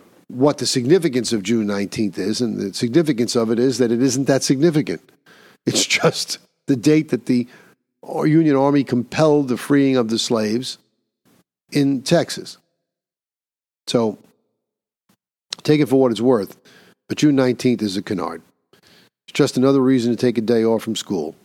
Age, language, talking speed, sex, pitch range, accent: 50-69, English, 160 wpm, male, 115-135 Hz, American